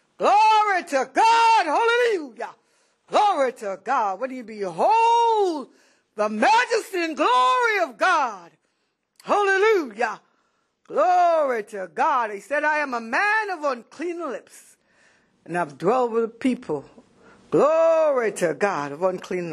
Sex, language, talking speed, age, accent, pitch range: female, English, 125 wpm, 60-79, American, 205-295 Hz